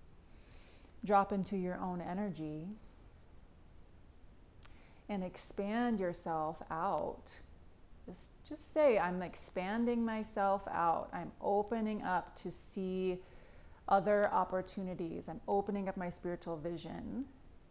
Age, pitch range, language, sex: 30-49, 160-200 Hz, English, female